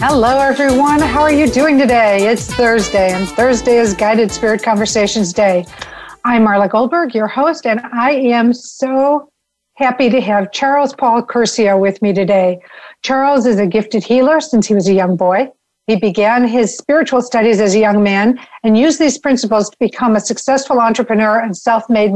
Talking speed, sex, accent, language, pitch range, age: 175 wpm, female, American, English, 210-260 Hz, 50-69